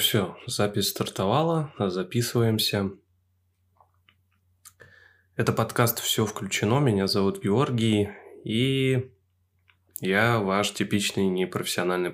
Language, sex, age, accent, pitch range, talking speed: Russian, male, 20-39, native, 90-110 Hz, 80 wpm